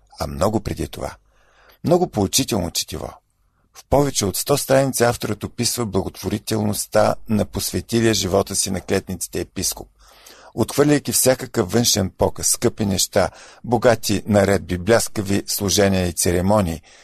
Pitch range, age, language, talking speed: 90-115 Hz, 50-69, Bulgarian, 120 wpm